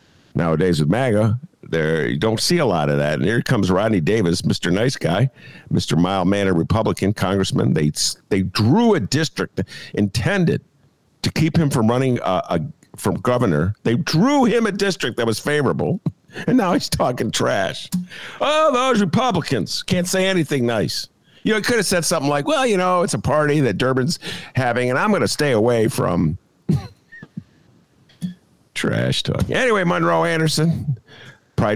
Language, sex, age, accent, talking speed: English, male, 50-69, American, 165 wpm